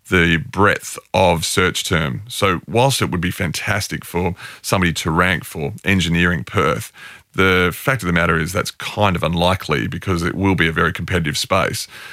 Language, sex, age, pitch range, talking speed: English, male, 30-49, 90-110 Hz, 180 wpm